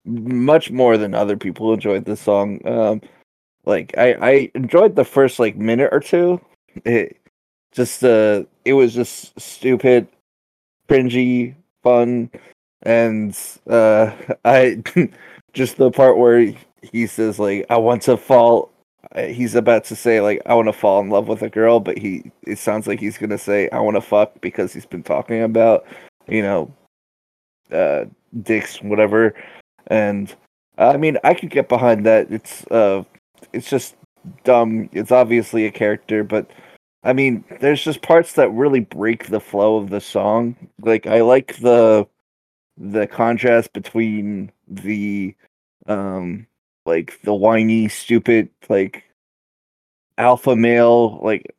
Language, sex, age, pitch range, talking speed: English, male, 20-39, 105-120 Hz, 145 wpm